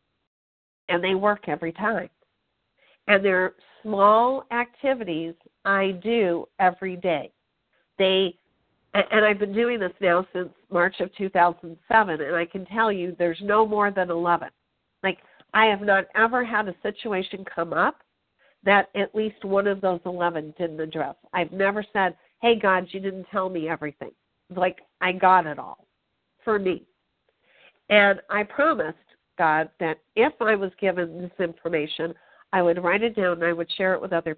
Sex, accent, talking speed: female, American, 160 wpm